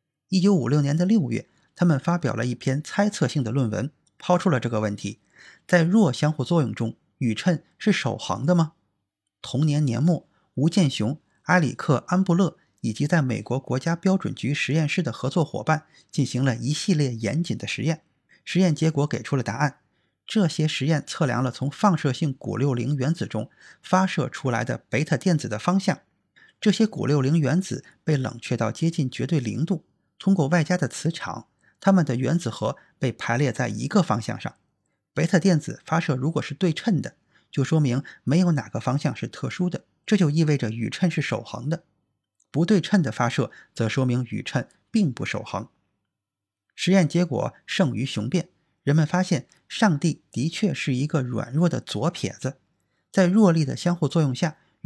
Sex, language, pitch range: male, Chinese, 125-175 Hz